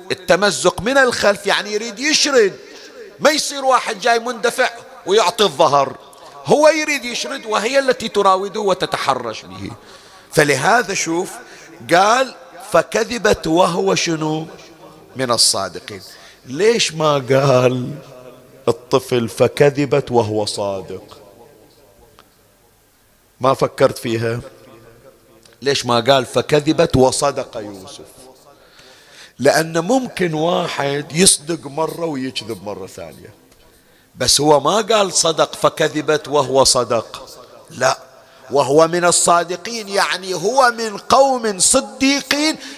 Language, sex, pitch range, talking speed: Arabic, male, 140-225 Hz, 100 wpm